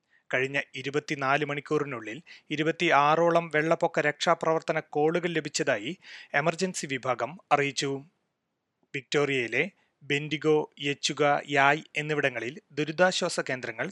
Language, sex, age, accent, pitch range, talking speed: Malayalam, male, 30-49, native, 140-165 Hz, 75 wpm